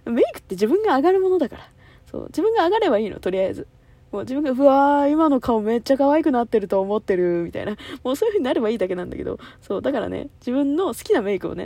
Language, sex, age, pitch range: Japanese, female, 20-39, 200-295 Hz